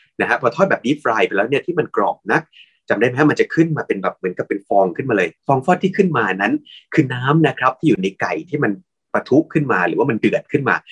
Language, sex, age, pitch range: Thai, male, 30-49, 115-165 Hz